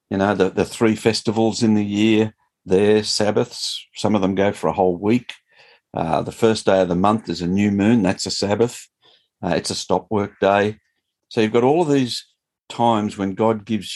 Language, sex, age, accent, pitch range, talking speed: English, male, 50-69, Australian, 90-115 Hz, 210 wpm